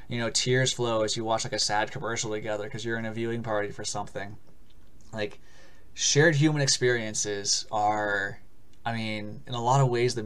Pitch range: 110-135 Hz